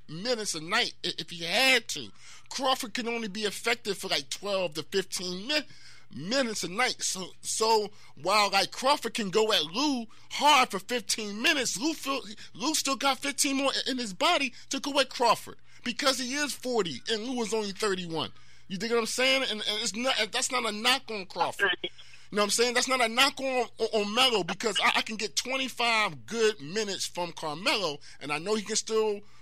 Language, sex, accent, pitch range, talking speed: English, male, American, 185-240 Hz, 205 wpm